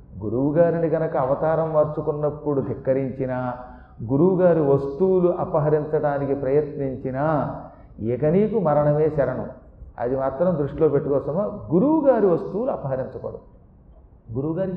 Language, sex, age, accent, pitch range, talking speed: Telugu, male, 40-59, native, 145-190 Hz, 80 wpm